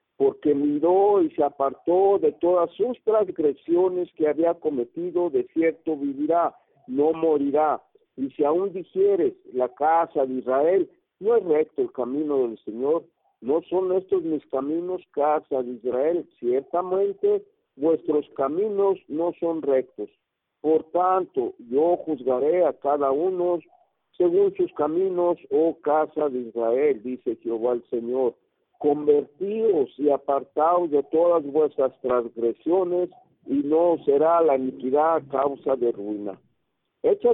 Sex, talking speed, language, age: male, 130 wpm, Spanish, 50-69